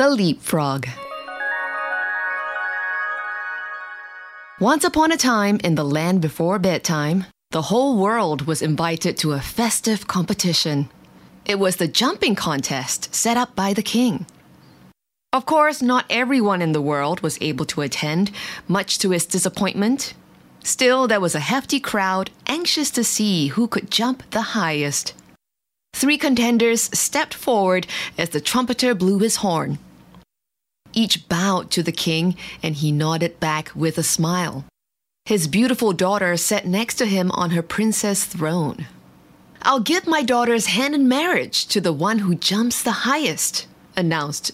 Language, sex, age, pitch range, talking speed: English, female, 20-39, 170-240 Hz, 145 wpm